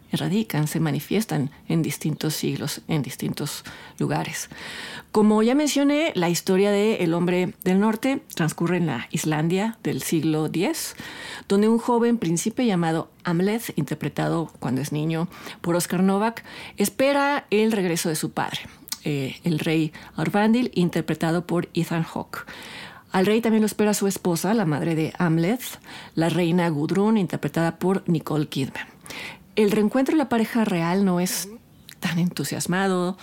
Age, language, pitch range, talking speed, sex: 40-59, Spanish, 165-215 Hz, 145 wpm, female